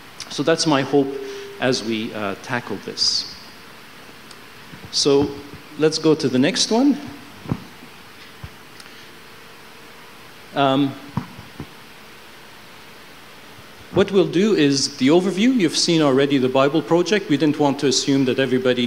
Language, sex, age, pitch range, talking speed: English, male, 50-69, 135-175 Hz, 115 wpm